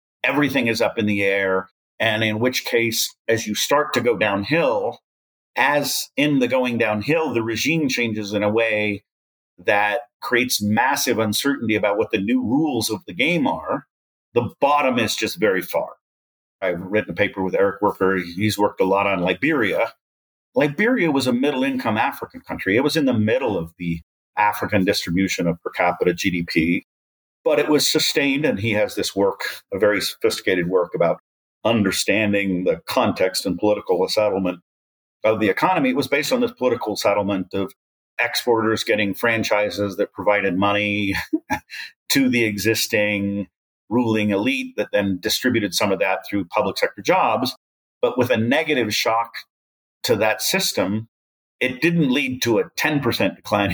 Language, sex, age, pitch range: English, male, 40-59, 95-130 Hz